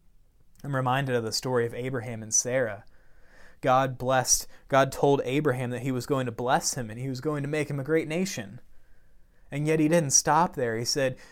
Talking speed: 205 wpm